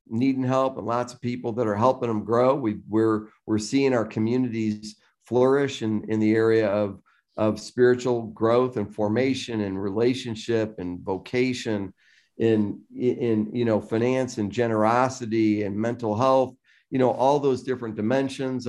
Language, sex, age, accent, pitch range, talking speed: English, male, 50-69, American, 105-125 Hz, 155 wpm